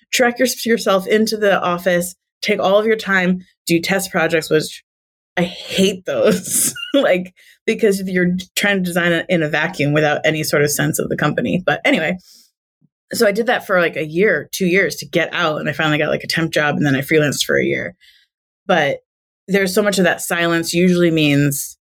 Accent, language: American, English